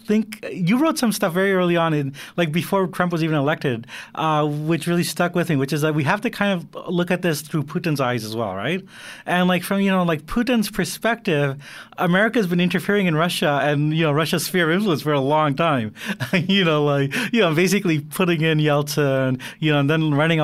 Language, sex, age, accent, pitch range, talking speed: English, male, 30-49, American, 140-180 Hz, 225 wpm